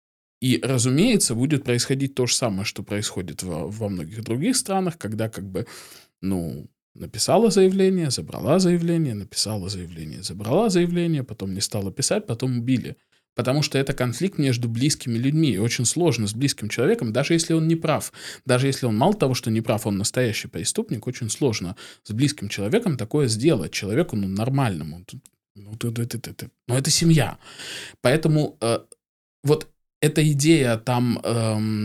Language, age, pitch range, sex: Russian, 20-39, 110-145 Hz, male